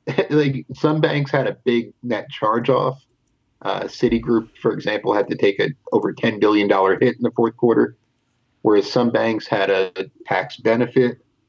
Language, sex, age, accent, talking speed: English, male, 30-49, American, 160 wpm